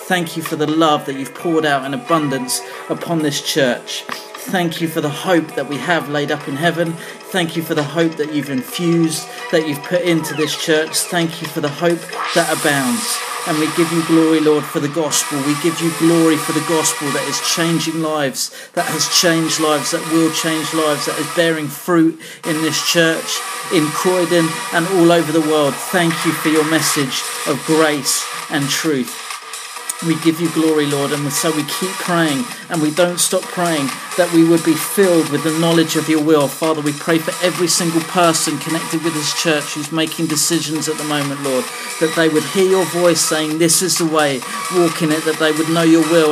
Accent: British